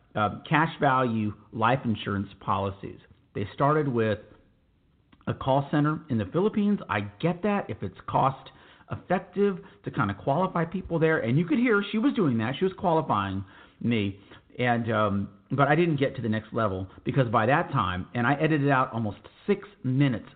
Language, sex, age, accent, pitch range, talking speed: English, male, 40-59, American, 105-150 Hz, 180 wpm